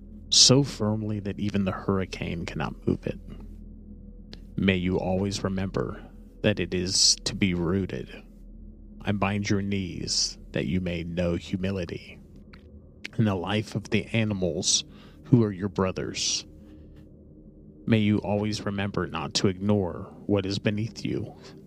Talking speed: 135 wpm